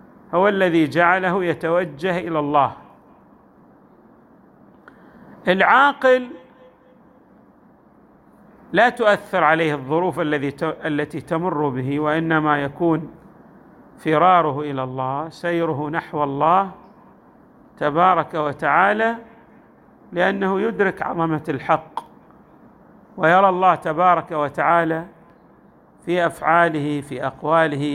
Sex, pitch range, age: male, 155-220 Hz, 50-69